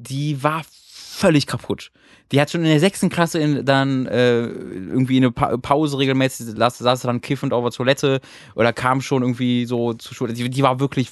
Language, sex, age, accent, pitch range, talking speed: German, male, 20-39, German, 125-165 Hz, 200 wpm